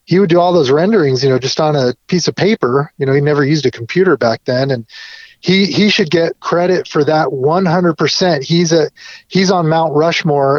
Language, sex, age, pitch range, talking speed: English, male, 30-49, 140-180 Hz, 215 wpm